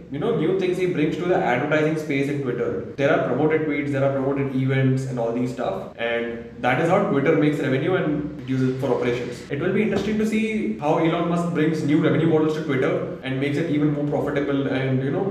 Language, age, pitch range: English, 20-39, 125-145 Hz